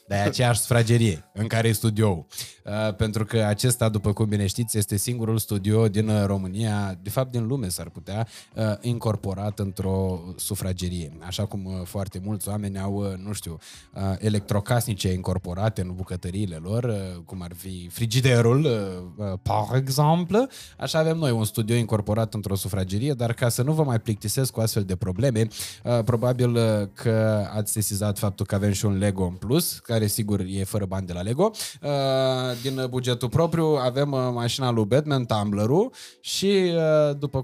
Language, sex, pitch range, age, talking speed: Romanian, male, 100-130 Hz, 20-39, 155 wpm